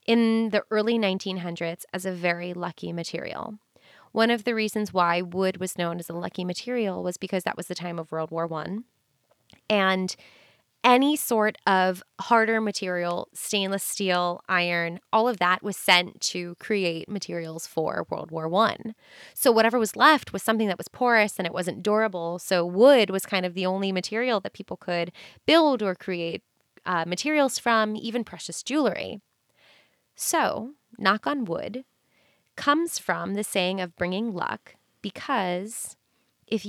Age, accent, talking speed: 20-39, American, 160 wpm